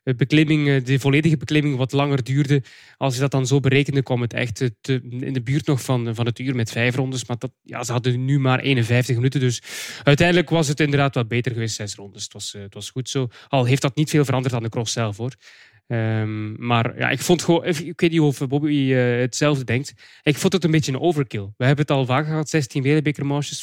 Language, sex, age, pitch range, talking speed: English, male, 20-39, 125-155 Hz, 235 wpm